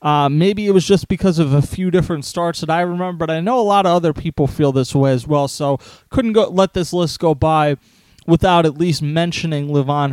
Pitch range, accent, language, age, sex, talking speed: 145-180 Hz, American, English, 30-49, male, 230 wpm